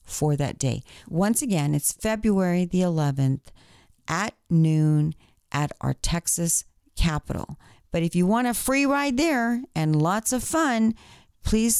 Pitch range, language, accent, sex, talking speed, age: 145-205 Hz, English, American, female, 140 wpm, 40-59